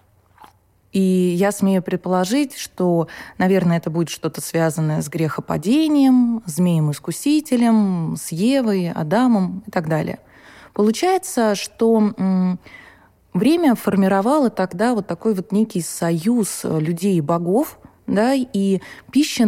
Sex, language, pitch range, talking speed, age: female, Russian, 175-225 Hz, 105 wpm, 20-39